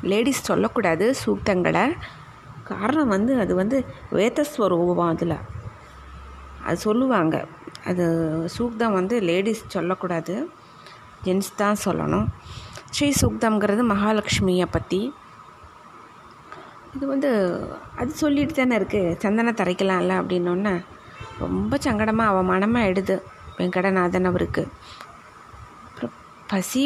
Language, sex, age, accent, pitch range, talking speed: Tamil, female, 20-39, native, 180-220 Hz, 85 wpm